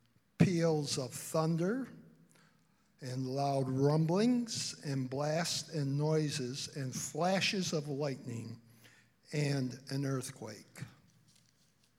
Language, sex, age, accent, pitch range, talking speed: English, male, 50-69, American, 130-165 Hz, 85 wpm